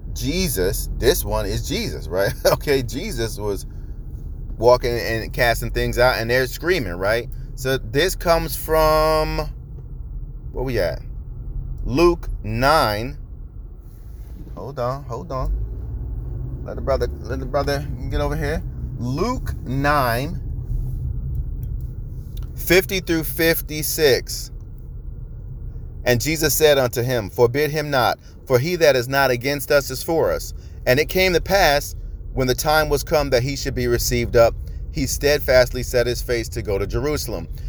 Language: English